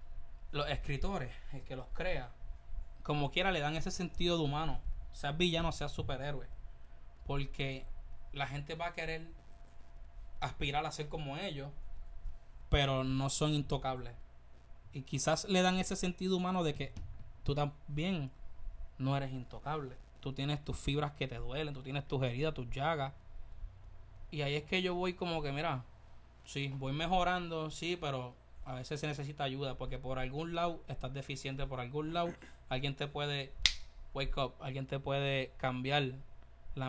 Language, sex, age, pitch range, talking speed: Spanish, male, 20-39, 105-155 Hz, 160 wpm